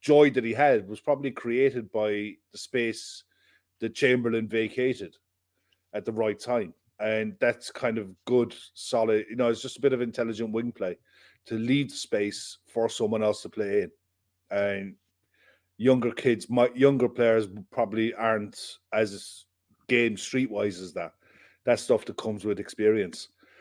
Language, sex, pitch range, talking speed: English, male, 105-130 Hz, 160 wpm